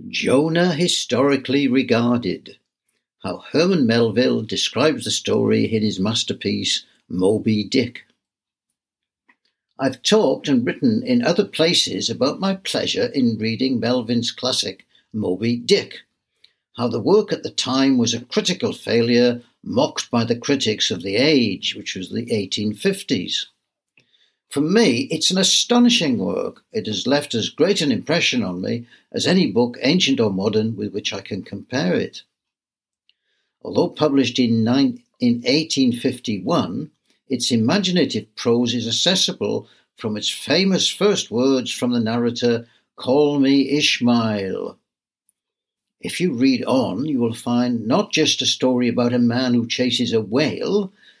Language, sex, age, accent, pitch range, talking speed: English, male, 60-79, British, 120-185 Hz, 135 wpm